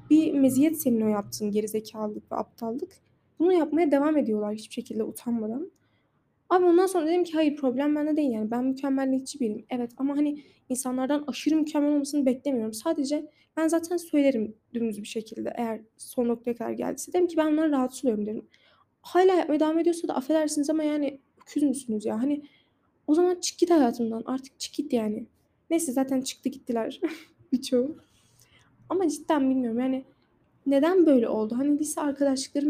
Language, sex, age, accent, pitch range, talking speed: Turkish, female, 10-29, native, 255-310 Hz, 165 wpm